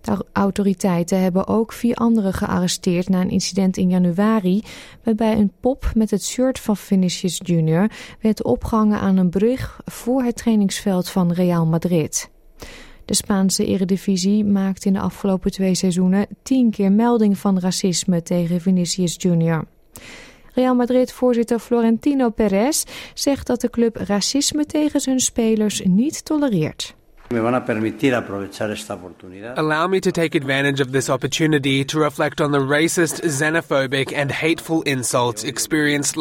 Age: 20-39